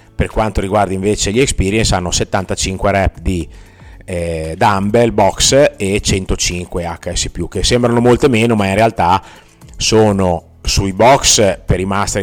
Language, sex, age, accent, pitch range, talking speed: Italian, male, 30-49, native, 95-115 Hz, 140 wpm